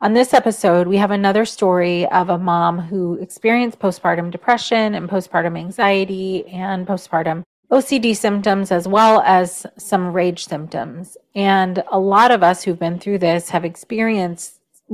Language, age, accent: English, 30-49, American